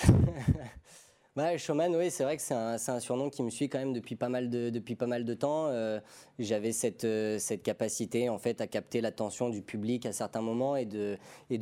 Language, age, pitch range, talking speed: French, 20-39, 110-130 Hz, 220 wpm